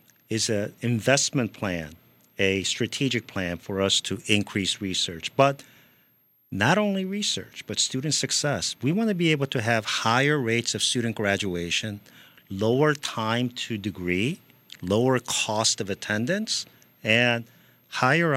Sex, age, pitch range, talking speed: male, 50-69, 100-135 Hz, 135 wpm